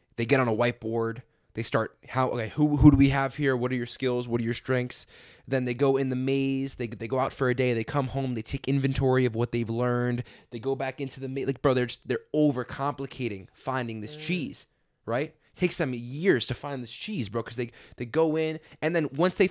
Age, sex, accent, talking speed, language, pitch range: 20-39, male, American, 245 wpm, English, 125-150 Hz